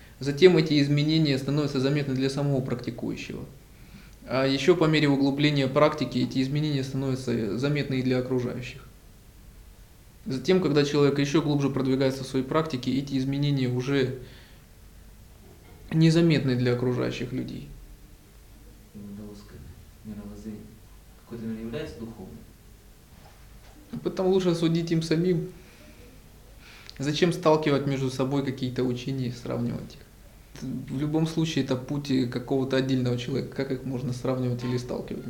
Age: 20-39